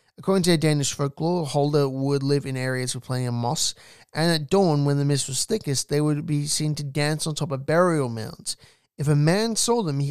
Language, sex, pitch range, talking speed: English, male, 140-165 Hz, 225 wpm